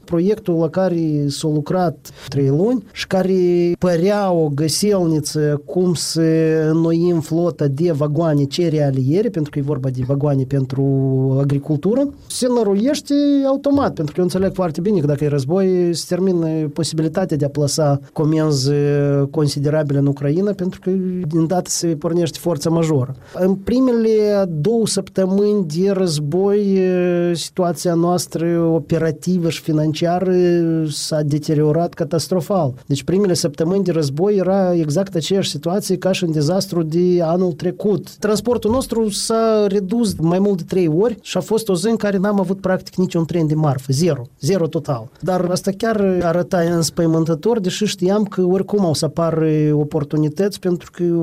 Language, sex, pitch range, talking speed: Romanian, male, 155-190 Hz, 150 wpm